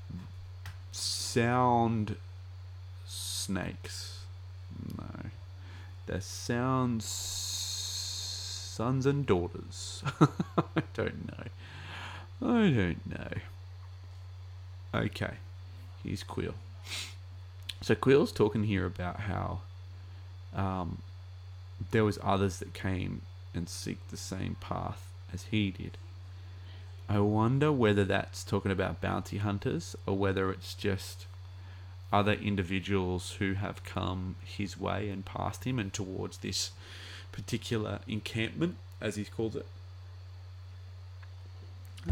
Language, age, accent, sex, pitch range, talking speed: English, 30-49, Australian, male, 95-100 Hz, 100 wpm